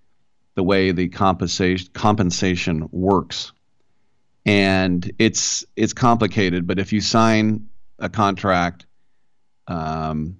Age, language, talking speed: 40-59, English, 100 wpm